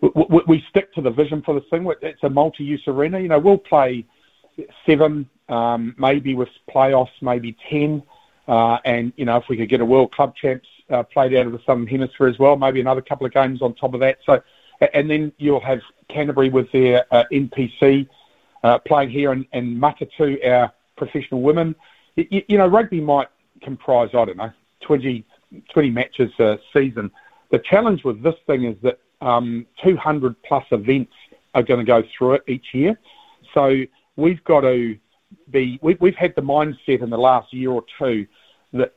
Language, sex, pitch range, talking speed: English, male, 120-150 Hz, 185 wpm